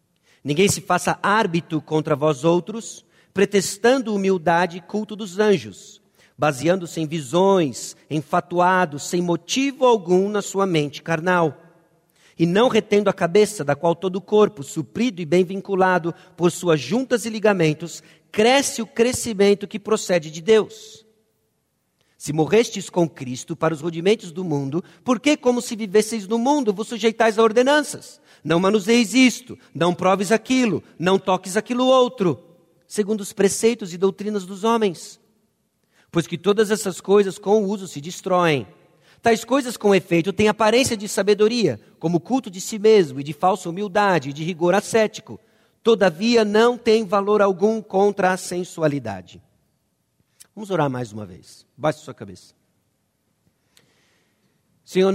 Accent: Brazilian